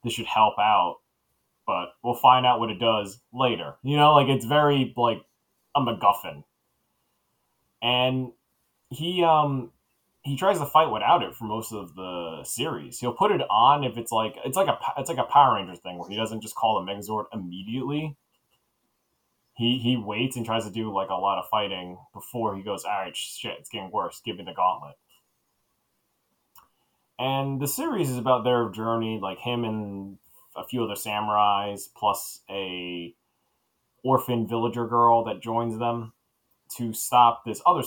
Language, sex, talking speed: English, male, 175 wpm